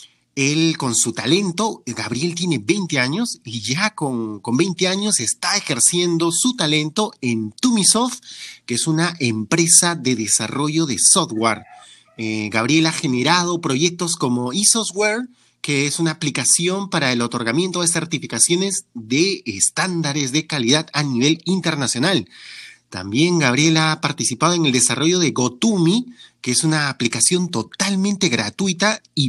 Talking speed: 135 wpm